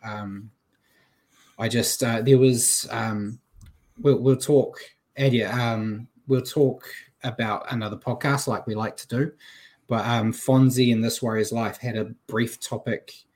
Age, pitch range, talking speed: 20-39, 110-130 Hz, 150 wpm